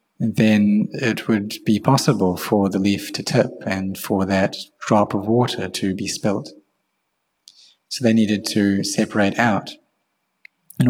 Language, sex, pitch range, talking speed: English, male, 100-120 Hz, 145 wpm